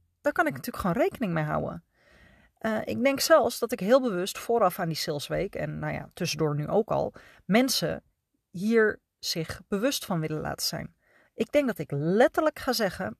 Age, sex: 30-49, female